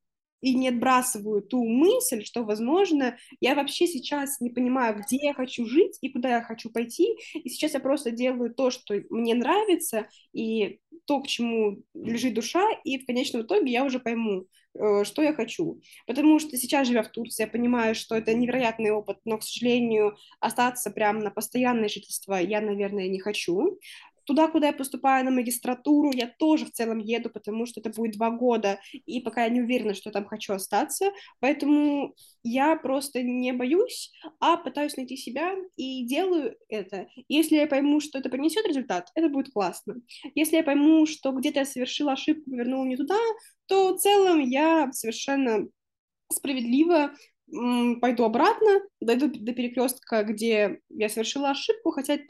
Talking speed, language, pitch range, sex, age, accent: 170 wpm, Russian, 225-300 Hz, female, 20-39, native